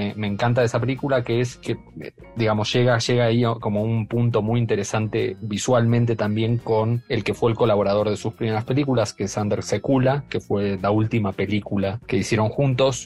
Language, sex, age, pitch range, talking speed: Spanish, male, 30-49, 105-120 Hz, 190 wpm